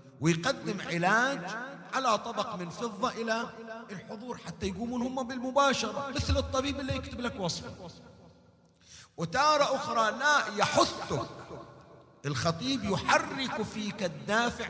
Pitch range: 140-225 Hz